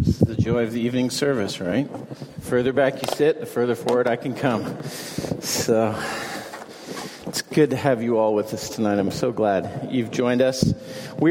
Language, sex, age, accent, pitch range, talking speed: English, male, 40-59, American, 120-155 Hz, 195 wpm